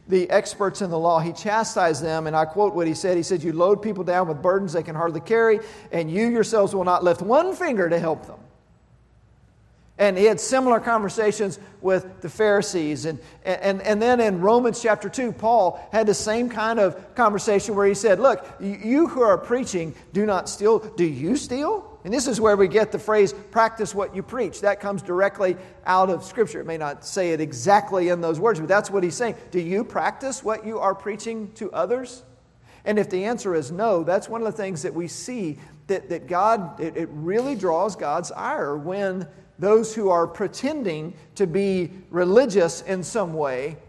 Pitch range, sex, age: 165-215 Hz, male, 50-69